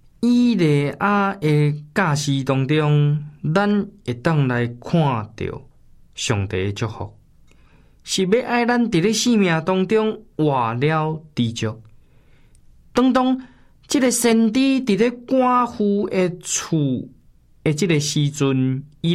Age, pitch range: 20-39, 145-210 Hz